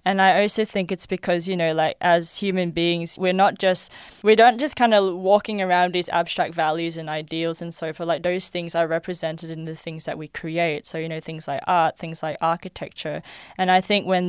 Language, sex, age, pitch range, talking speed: English, female, 20-39, 165-185 Hz, 225 wpm